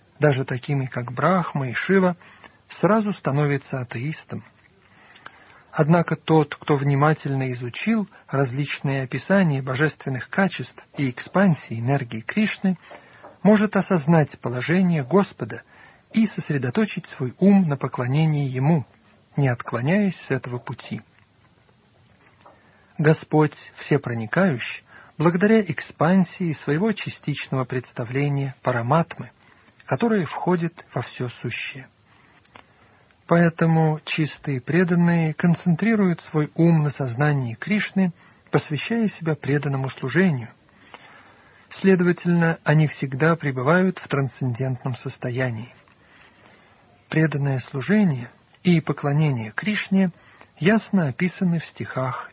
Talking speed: 90 wpm